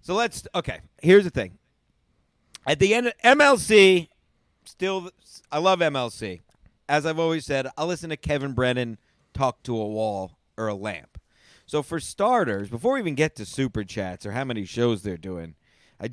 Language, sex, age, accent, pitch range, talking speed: English, male, 50-69, American, 125-205 Hz, 180 wpm